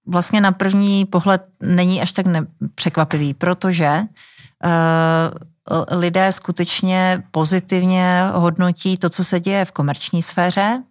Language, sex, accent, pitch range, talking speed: Czech, female, native, 160-180 Hz, 115 wpm